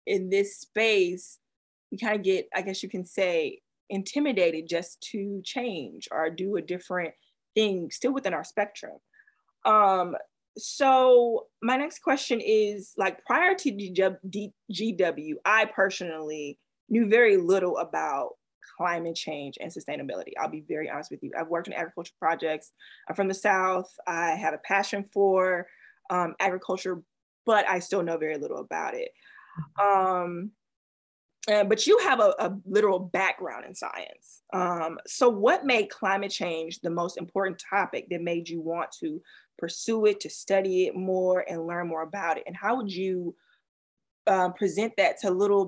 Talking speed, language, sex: 160 wpm, English, female